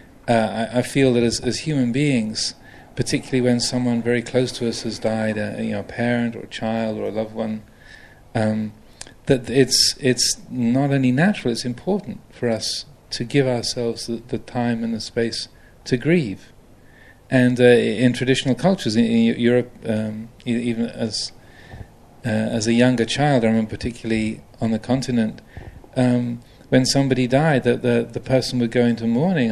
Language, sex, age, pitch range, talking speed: English, male, 40-59, 115-130 Hz, 170 wpm